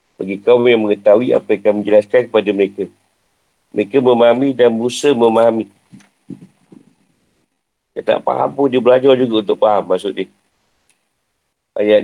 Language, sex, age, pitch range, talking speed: Malay, male, 50-69, 115-145 Hz, 135 wpm